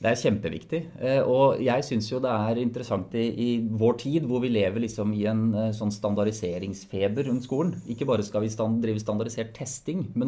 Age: 30-49